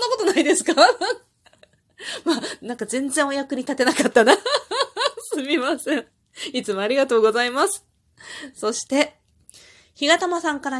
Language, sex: Japanese, female